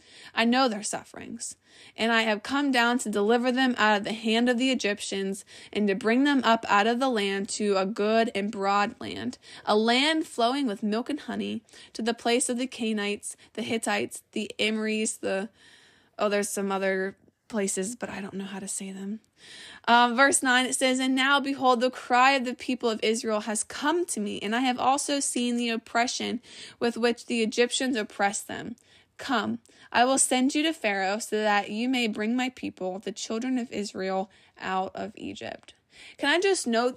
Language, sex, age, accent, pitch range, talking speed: English, female, 20-39, American, 210-270 Hz, 200 wpm